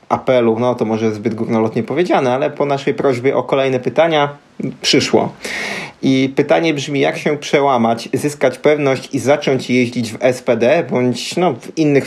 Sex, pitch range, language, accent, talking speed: male, 120-140 Hz, Polish, native, 160 wpm